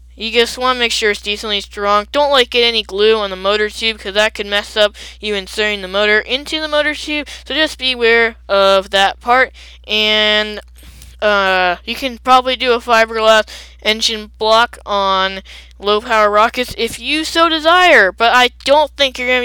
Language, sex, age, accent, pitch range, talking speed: English, female, 10-29, American, 205-255 Hz, 185 wpm